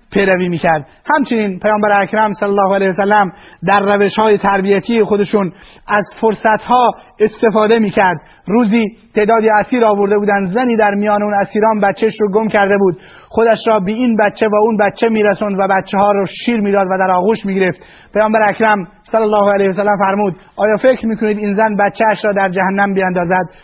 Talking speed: 180 wpm